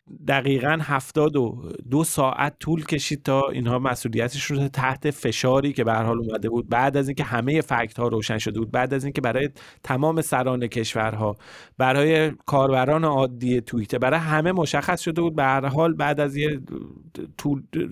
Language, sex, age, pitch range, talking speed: Persian, male, 30-49, 125-155 Hz, 160 wpm